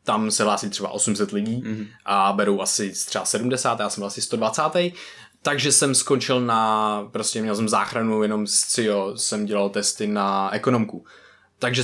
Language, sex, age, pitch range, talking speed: Czech, male, 20-39, 105-125 Hz, 165 wpm